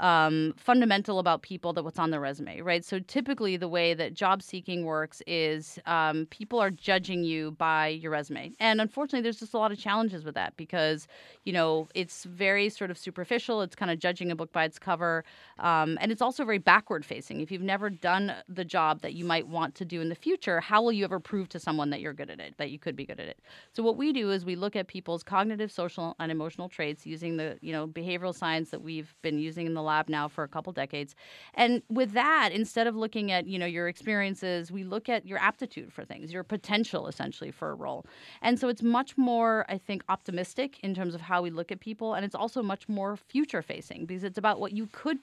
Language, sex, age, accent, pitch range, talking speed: English, female, 30-49, American, 165-210 Hz, 235 wpm